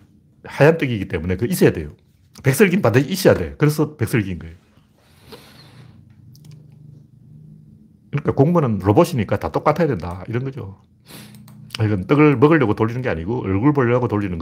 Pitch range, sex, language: 100-145 Hz, male, Korean